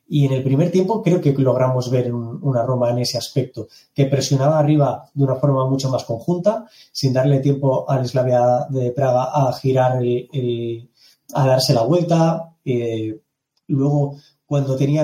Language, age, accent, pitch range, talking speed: Spanish, 20-39, Spanish, 130-150 Hz, 170 wpm